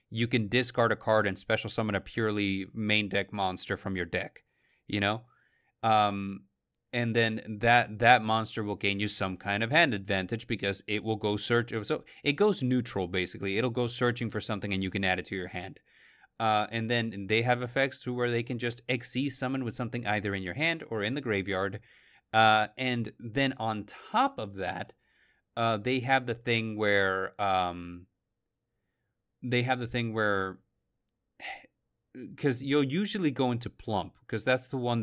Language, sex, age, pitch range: English, male, 30-49, 100-120 Hz